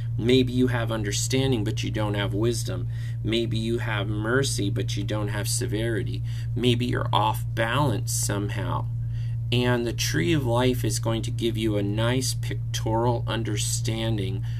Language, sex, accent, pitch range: English, male, American, 115-120 Hz